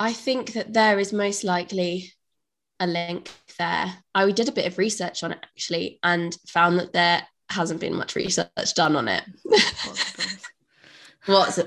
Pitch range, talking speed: 170-205 Hz, 160 wpm